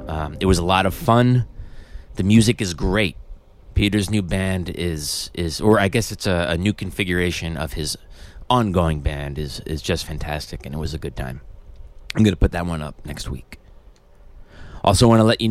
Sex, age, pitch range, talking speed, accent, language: male, 30-49, 85-105 Hz, 200 wpm, American, English